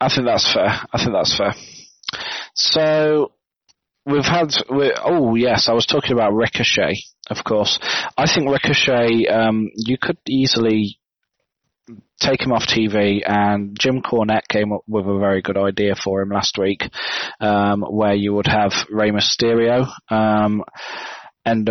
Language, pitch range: English, 105-115 Hz